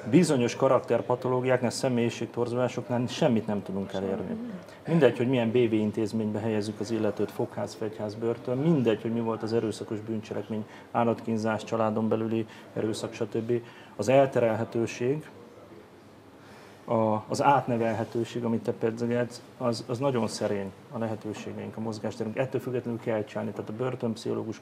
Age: 30-49